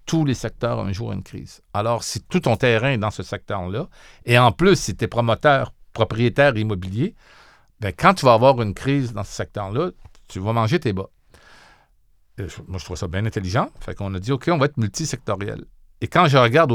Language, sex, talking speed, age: French, male, 215 wpm, 50-69